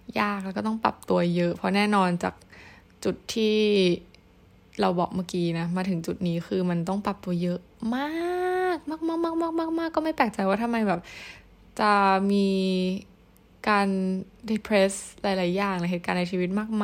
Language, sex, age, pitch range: Thai, female, 20-39, 175-205 Hz